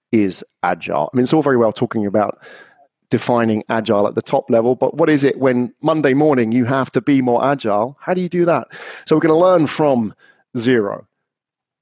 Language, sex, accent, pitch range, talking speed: English, male, British, 120-160 Hz, 210 wpm